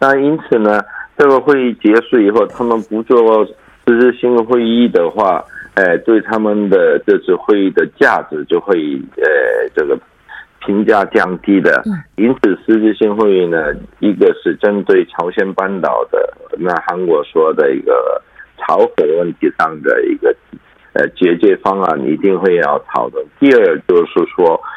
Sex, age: male, 50-69